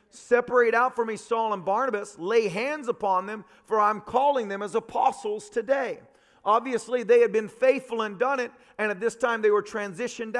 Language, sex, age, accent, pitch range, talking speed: English, male, 40-59, American, 225-280 Hz, 190 wpm